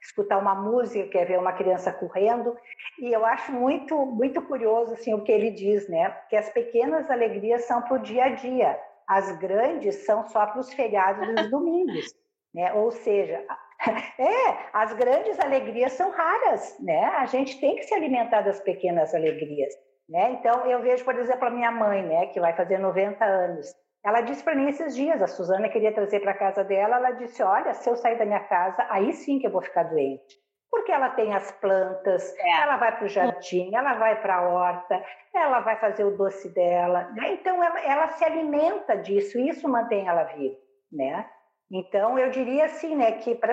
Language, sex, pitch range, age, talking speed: Portuguese, female, 195-265 Hz, 50-69, 195 wpm